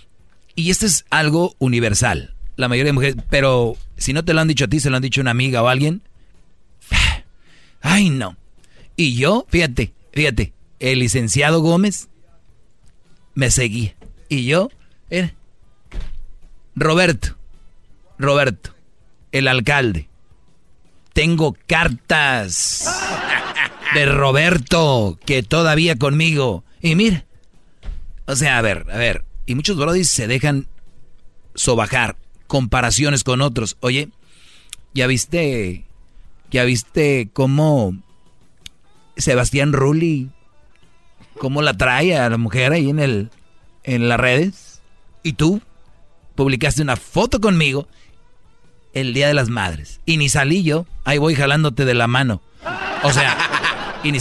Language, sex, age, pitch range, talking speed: Spanish, male, 40-59, 120-155 Hz, 125 wpm